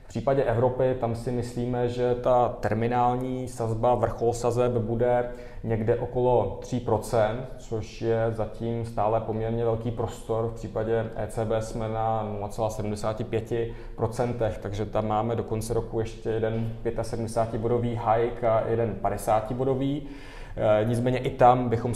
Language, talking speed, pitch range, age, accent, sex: Czech, 125 wpm, 115-125 Hz, 20-39, native, male